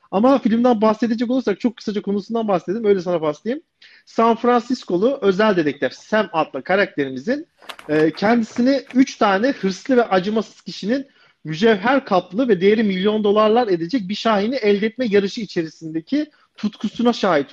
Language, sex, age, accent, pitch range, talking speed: Turkish, male, 40-59, native, 190-245 Hz, 140 wpm